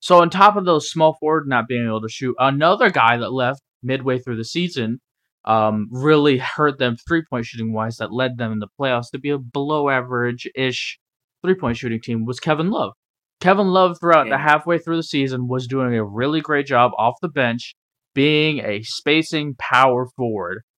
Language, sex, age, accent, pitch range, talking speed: English, male, 20-39, American, 115-150 Hz, 185 wpm